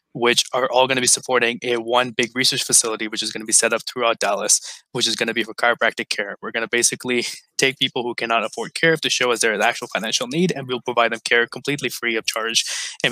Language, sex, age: English, male, 20-39